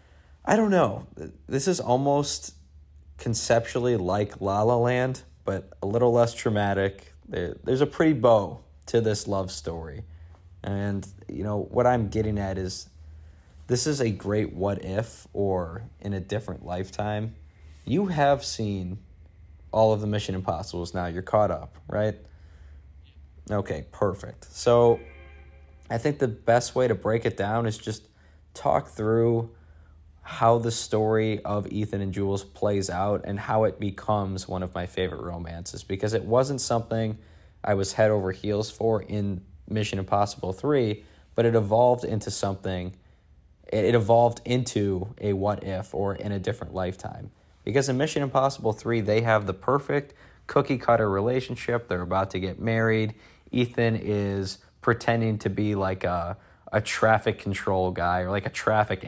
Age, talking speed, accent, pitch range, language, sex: 20-39, 155 wpm, American, 90-115 Hz, English, male